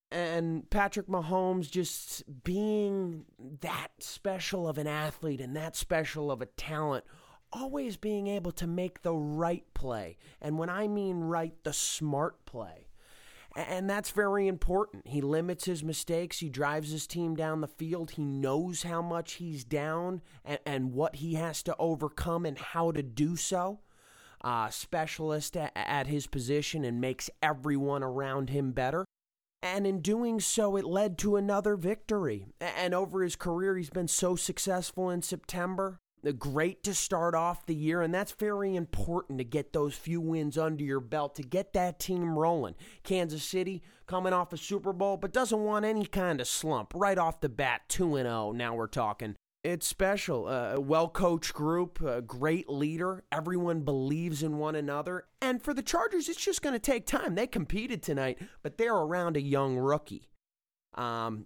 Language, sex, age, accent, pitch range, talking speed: English, male, 30-49, American, 145-185 Hz, 175 wpm